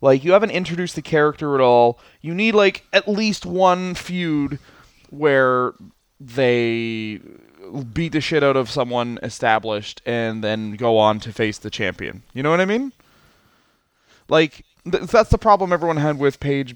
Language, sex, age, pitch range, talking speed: English, male, 20-39, 115-160 Hz, 160 wpm